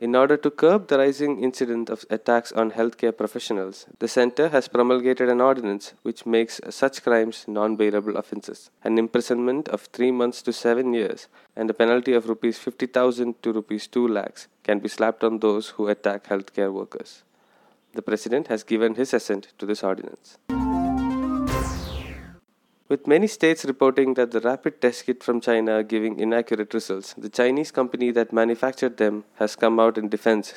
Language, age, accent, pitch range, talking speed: English, 20-39, Indian, 105-125 Hz, 170 wpm